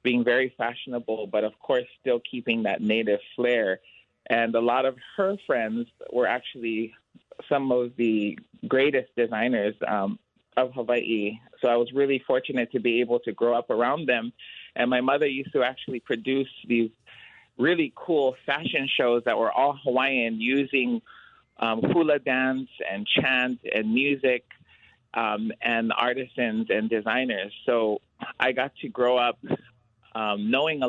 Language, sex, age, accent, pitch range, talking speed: English, male, 30-49, American, 115-130 Hz, 150 wpm